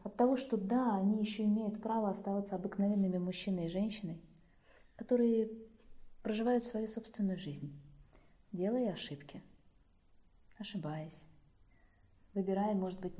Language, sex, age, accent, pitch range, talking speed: Russian, female, 20-39, native, 145-215 Hz, 110 wpm